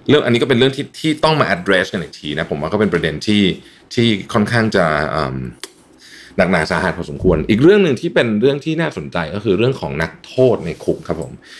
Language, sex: Thai, male